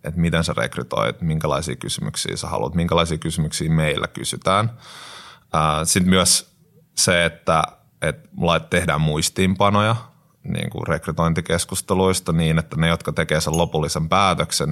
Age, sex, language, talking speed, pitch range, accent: 30-49, male, Finnish, 110 wpm, 80-90 Hz, native